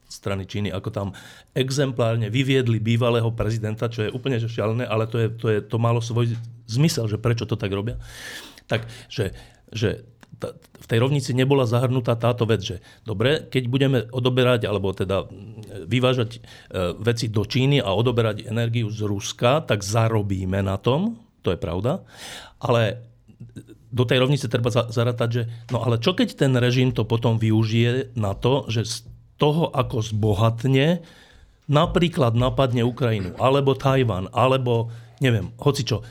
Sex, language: male, Slovak